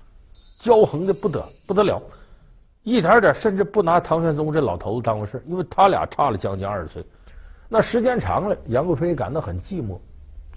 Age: 50-69